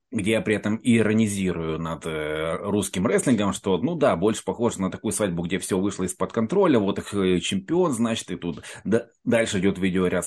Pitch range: 85-105 Hz